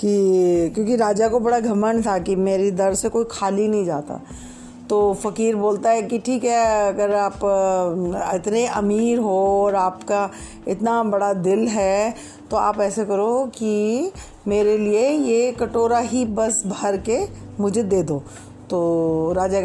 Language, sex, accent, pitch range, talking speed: Hindi, female, native, 195-230 Hz, 155 wpm